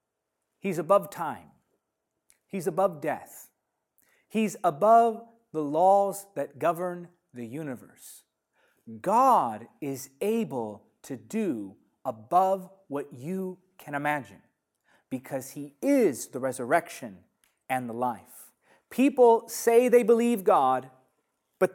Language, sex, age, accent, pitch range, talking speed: English, male, 40-59, American, 150-220 Hz, 105 wpm